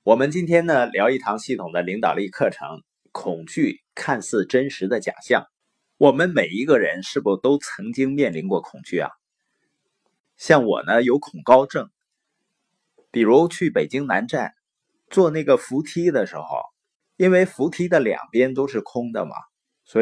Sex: male